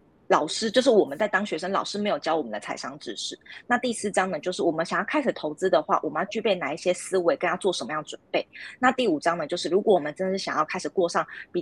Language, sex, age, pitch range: Chinese, female, 20-39, 180-250 Hz